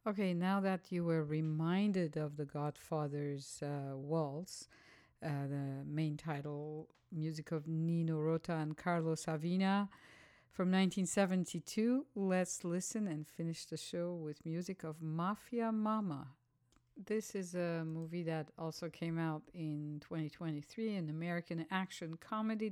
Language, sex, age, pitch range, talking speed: English, female, 50-69, 155-185 Hz, 130 wpm